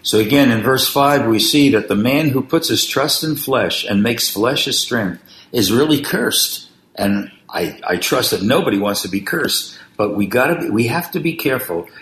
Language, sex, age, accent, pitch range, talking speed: English, male, 60-79, American, 100-140 Hz, 215 wpm